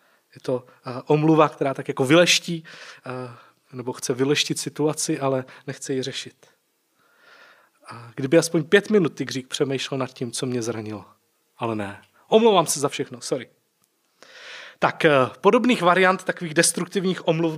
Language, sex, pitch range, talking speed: Czech, male, 130-175 Hz, 150 wpm